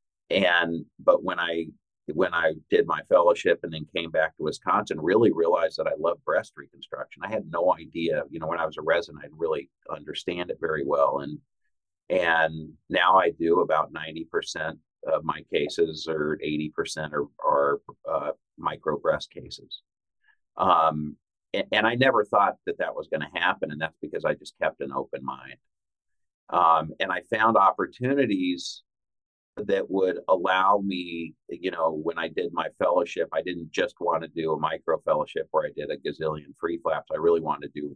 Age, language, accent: 50-69, English, American